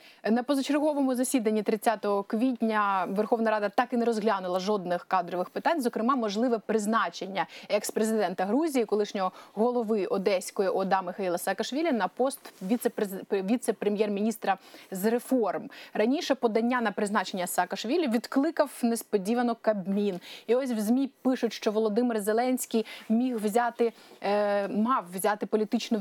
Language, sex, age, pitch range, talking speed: Ukrainian, female, 20-39, 210-255 Hz, 120 wpm